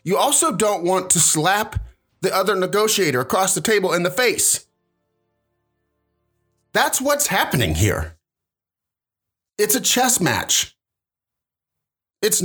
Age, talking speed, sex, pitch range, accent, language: 30-49, 115 wpm, male, 115-190 Hz, American, English